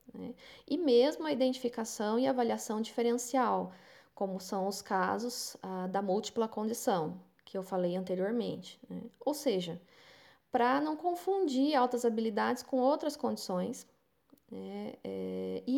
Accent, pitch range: Brazilian, 205-265 Hz